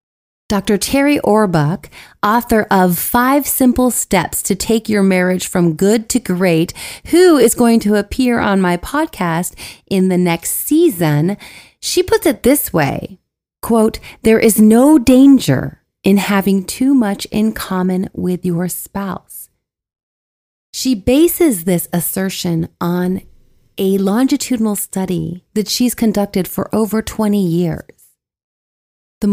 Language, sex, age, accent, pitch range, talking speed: English, female, 30-49, American, 180-240 Hz, 130 wpm